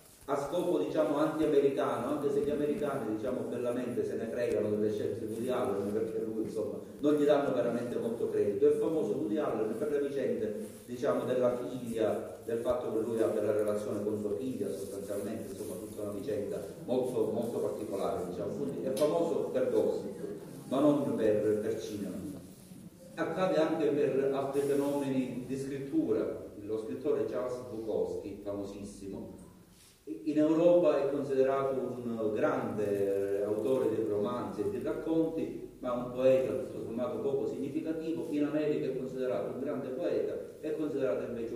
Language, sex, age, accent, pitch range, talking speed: Italian, male, 40-59, native, 110-165 Hz, 155 wpm